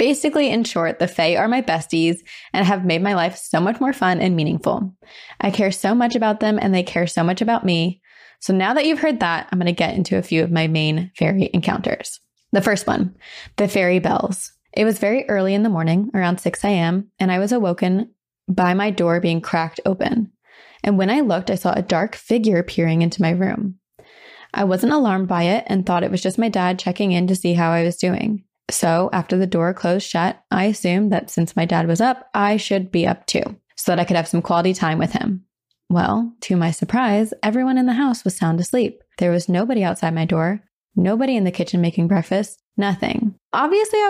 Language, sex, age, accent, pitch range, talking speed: English, female, 20-39, American, 175-220 Hz, 220 wpm